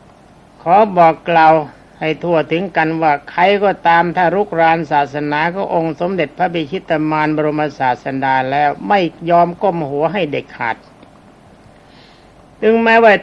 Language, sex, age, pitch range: Thai, male, 60-79, 145-180 Hz